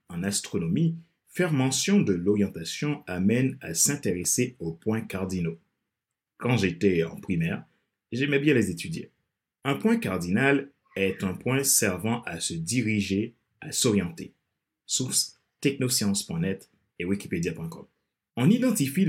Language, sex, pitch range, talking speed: French, male, 100-155 Hz, 120 wpm